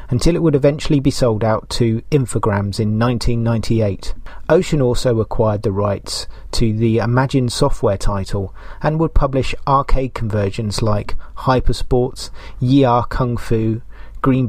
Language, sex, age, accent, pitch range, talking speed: English, male, 30-49, British, 105-130 Hz, 135 wpm